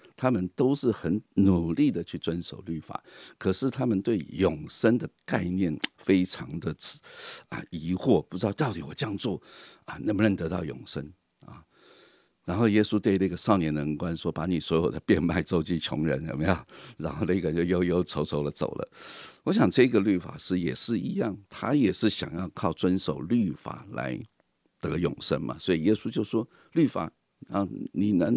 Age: 50-69